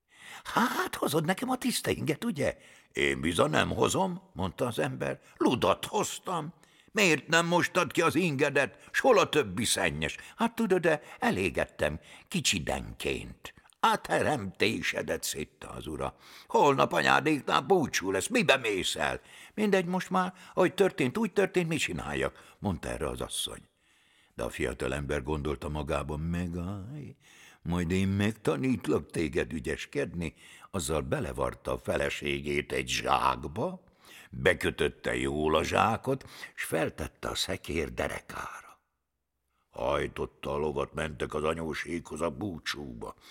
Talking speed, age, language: 125 wpm, 60-79, Hungarian